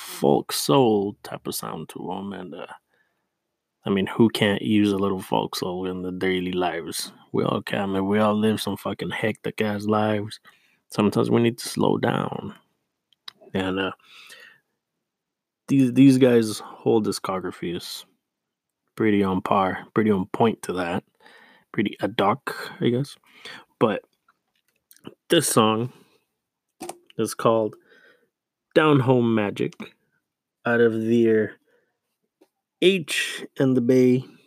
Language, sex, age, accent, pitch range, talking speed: English, male, 20-39, American, 100-125 Hz, 135 wpm